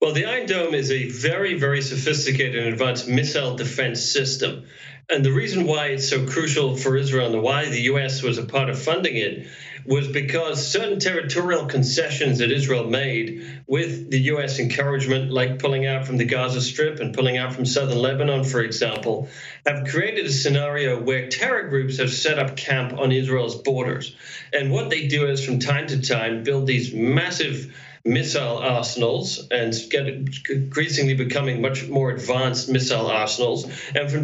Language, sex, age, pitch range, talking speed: English, male, 40-59, 125-145 Hz, 175 wpm